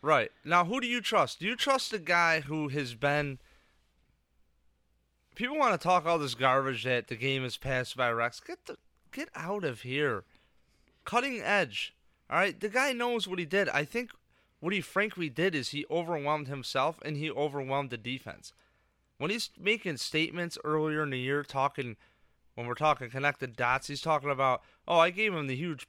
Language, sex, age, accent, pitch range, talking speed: English, male, 30-49, American, 110-160 Hz, 190 wpm